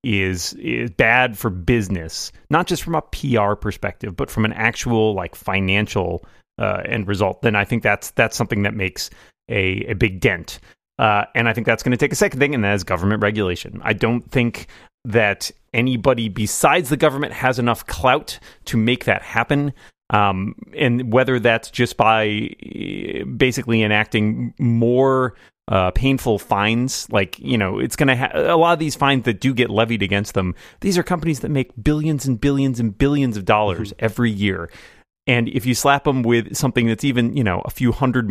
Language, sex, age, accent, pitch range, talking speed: English, male, 30-49, American, 105-130 Hz, 190 wpm